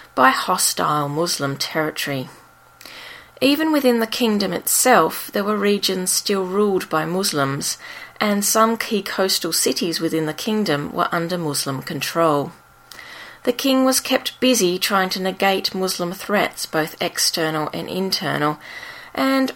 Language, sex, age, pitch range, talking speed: English, female, 30-49, 155-225 Hz, 130 wpm